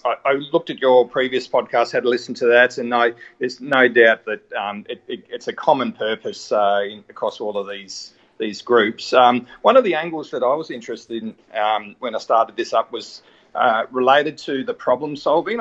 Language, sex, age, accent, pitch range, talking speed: English, male, 40-59, Australian, 125-150 Hz, 210 wpm